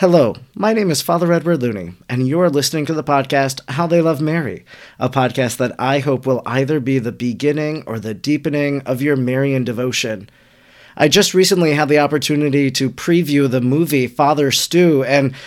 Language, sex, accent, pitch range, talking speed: English, male, American, 135-165 Hz, 180 wpm